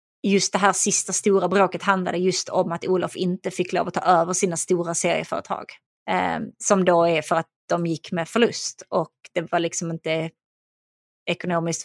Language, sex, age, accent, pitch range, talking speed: Swedish, female, 20-39, native, 175-205 Hz, 175 wpm